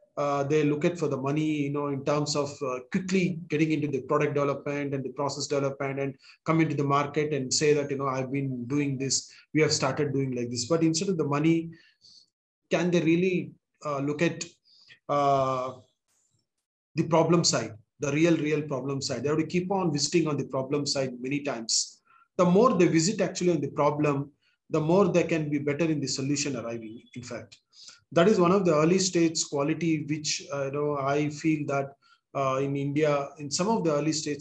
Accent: Indian